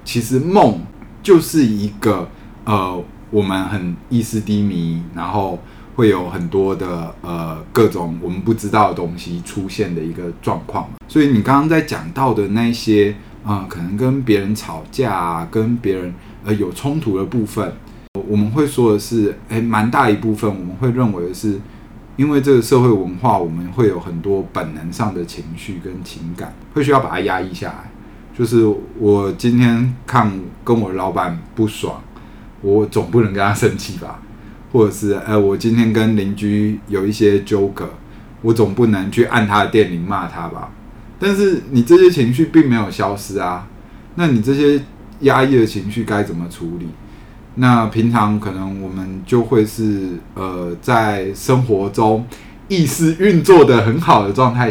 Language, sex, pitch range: Chinese, male, 95-120 Hz